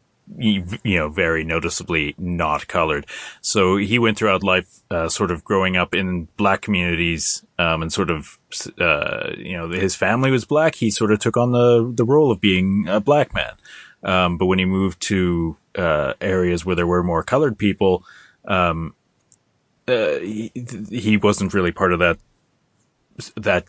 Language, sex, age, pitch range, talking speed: English, male, 30-49, 85-105 Hz, 170 wpm